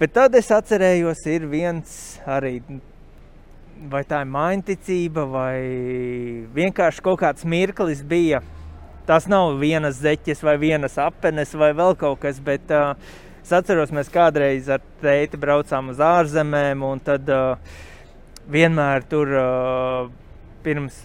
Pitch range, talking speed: 135-175 Hz, 130 wpm